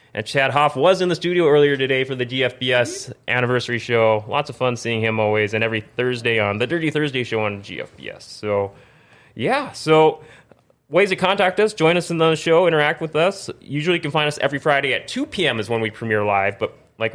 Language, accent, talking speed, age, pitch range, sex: English, American, 215 wpm, 20-39, 120-170 Hz, male